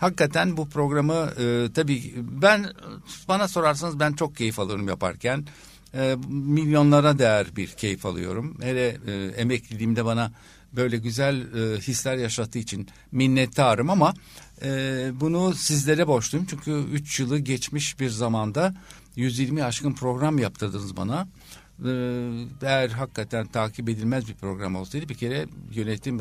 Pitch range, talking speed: 110-150 Hz, 130 wpm